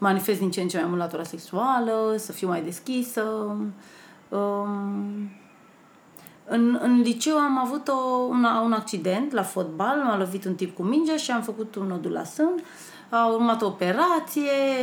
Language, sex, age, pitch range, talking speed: Romanian, female, 30-49, 190-265 Hz, 170 wpm